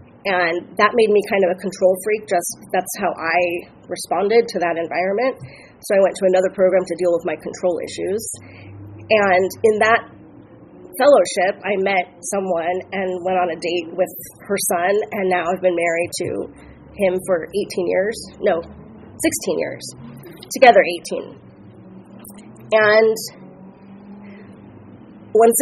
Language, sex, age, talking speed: English, female, 30-49, 145 wpm